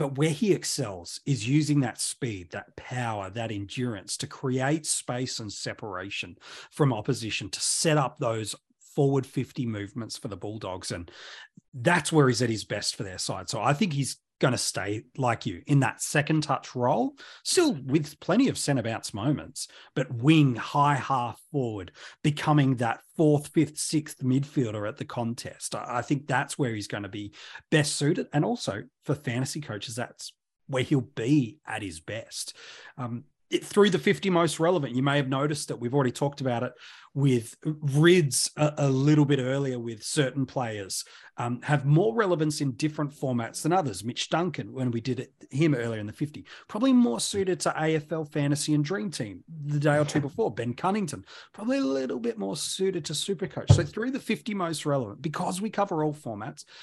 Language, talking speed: English, 185 wpm